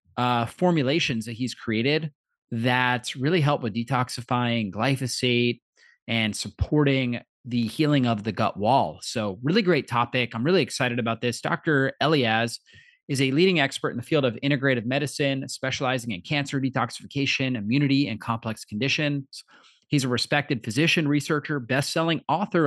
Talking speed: 145 wpm